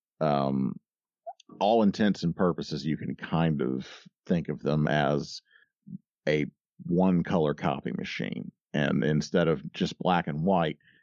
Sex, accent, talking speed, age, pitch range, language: male, American, 135 wpm, 50-69, 75-90 Hz, English